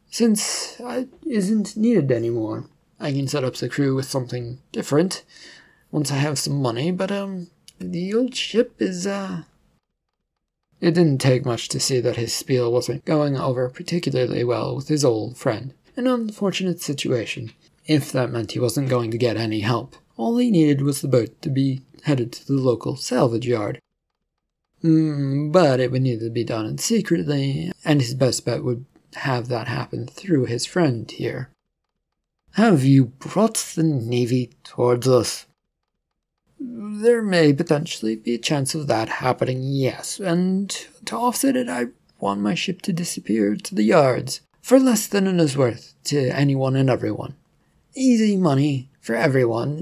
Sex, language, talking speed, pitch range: male, English, 165 wpm, 125-180 Hz